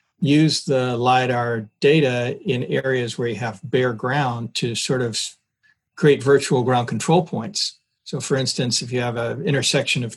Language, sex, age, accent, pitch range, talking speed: English, male, 50-69, American, 120-145 Hz, 165 wpm